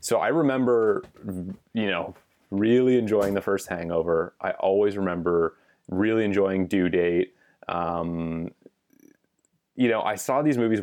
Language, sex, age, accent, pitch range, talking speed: English, male, 30-49, American, 85-100 Hz, 135 wpm